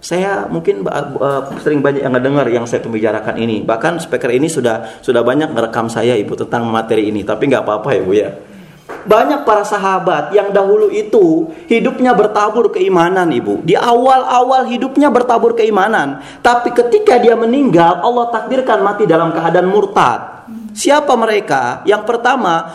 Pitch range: 170-240 Hz